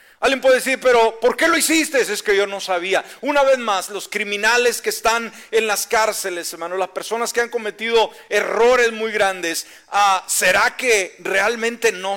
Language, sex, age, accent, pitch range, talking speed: Spanish, male, 40-59, Mexican, 190-250 Hz, 180 wpm